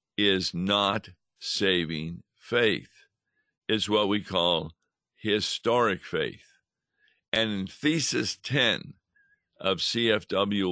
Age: 60-79